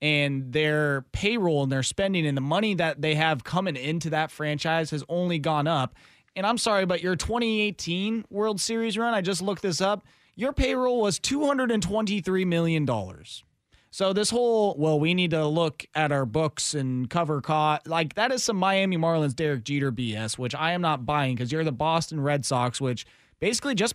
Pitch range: 150-210 Hz